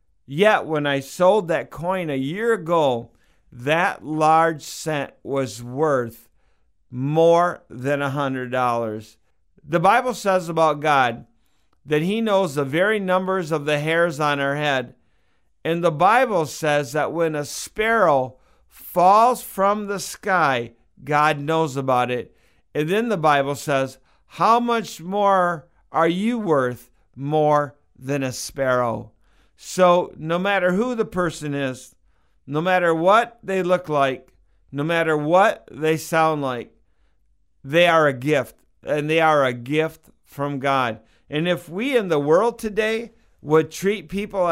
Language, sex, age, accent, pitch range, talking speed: English, male, 50-69, American, 130-175 Hz, 140 wpm